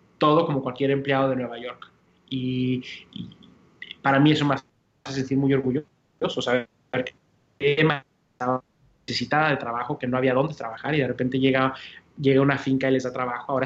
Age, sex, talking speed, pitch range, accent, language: 20-39, male, 175 wpm, 130-140 Hz, Mexican, Spanish